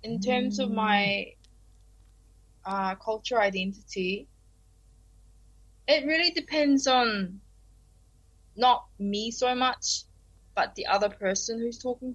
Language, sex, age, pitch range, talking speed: English, female, 20-39, 190-250 Hz, 105 wpm